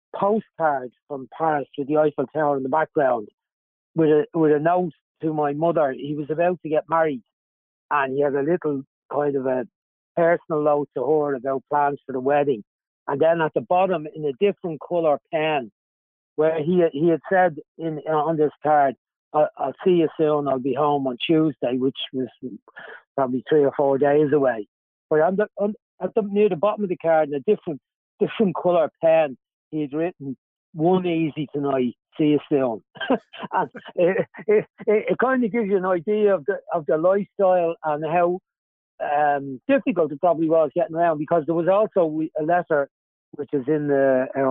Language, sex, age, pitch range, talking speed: English, male, 60-79, 145-170 Hz, 185 wpm